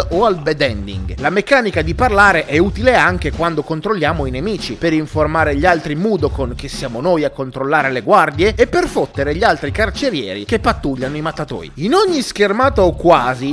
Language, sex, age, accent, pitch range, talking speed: Italian, male, 30-49, native, 150-205 Hz, 185 wpm